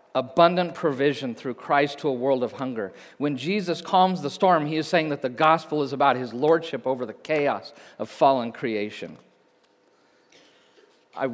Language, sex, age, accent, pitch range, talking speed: English, male, 40-59, American, 125-165 Hz, 165 wpm